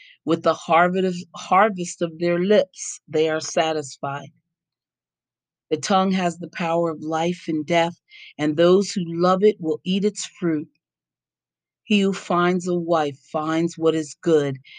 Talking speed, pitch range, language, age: 145 wpm, 150-190 Hz, English, 40-59